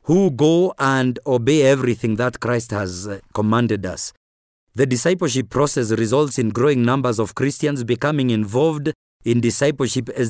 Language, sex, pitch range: English, male, 115-145 Hz